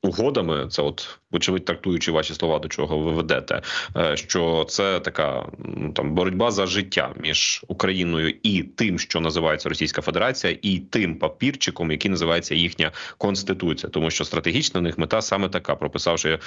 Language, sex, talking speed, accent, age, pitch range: Ukrainian, male, 155 wpm, native, 30-49, 85-105 Hz